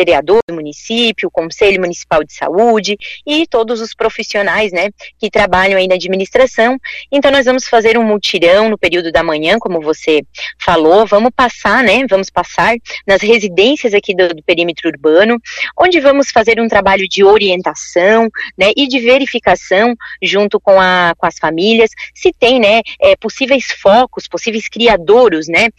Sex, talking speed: female, 155 wpm